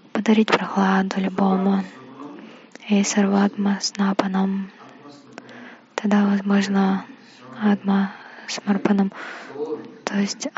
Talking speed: 80 wpm